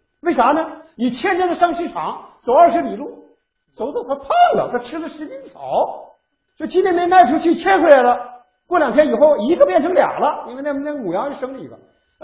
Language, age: Chinese, 50-69